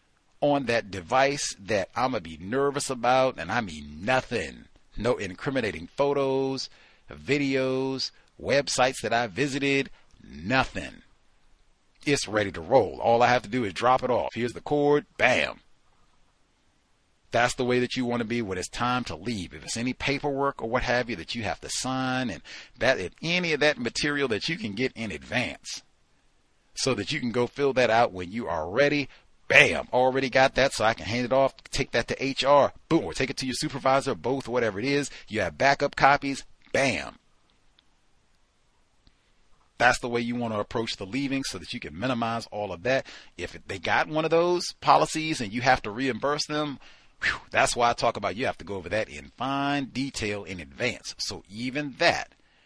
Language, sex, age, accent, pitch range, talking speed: English, male, 40-59, American, 115-140 Hz, 190 wpm